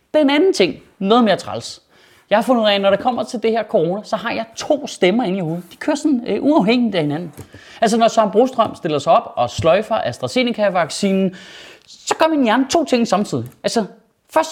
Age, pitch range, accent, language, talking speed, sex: 30-49, 165-225 Hz, native, Danish, 225 wpm, male